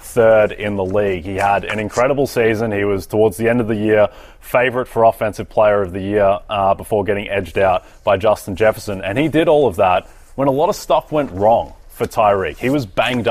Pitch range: 95-115 Hz